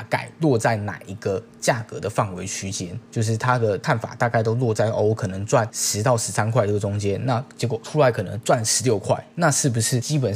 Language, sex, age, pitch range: Chinese, male, 20-39, 110-140 Hz